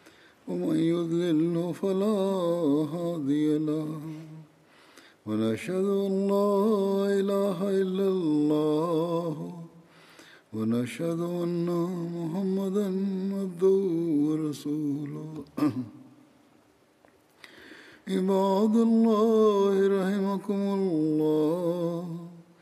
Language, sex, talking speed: Arabic, male, 50 wpm